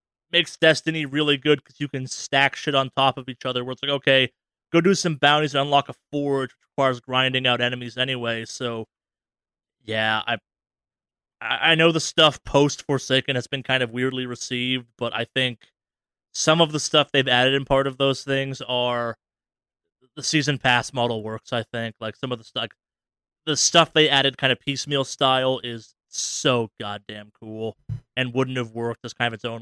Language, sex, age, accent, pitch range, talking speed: English, male, 20-39, American, 115-135 Hz, 190 wpm